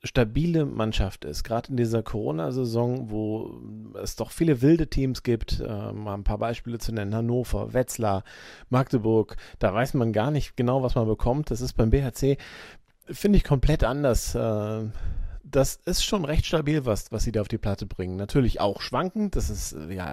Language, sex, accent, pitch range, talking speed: German, male, German, 110-140 Hz, 175 wpm